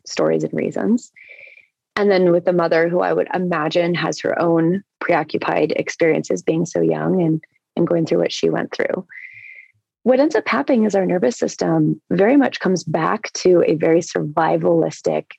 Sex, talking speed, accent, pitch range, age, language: female, 170 wpm, American, 170-260 Hz, 30-49, English